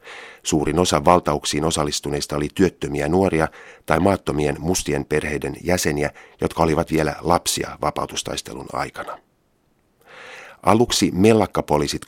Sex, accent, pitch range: male, native, 75-90 Hz